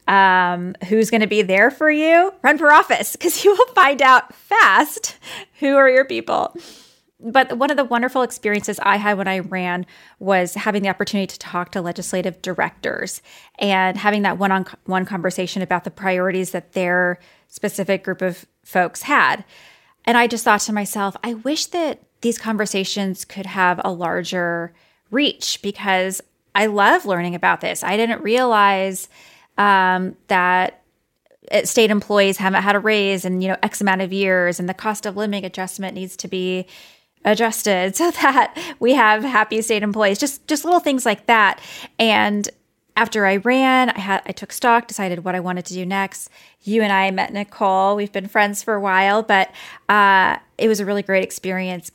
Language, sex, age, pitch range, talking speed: English, female, 20-39, 185-230 Hz, 180 wpm